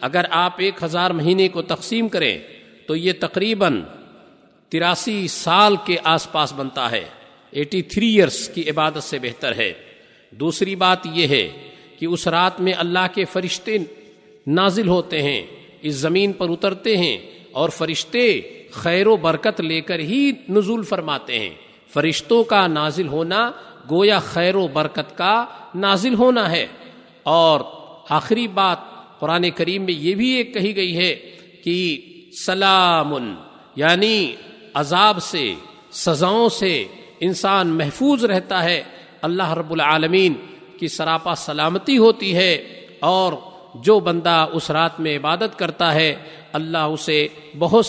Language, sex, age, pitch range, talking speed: Urdu, male, 50-69, 160-195 Hz, 140 wpm